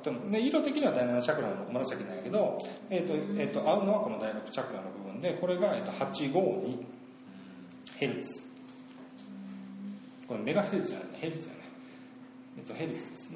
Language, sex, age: Japanese, male, 40-59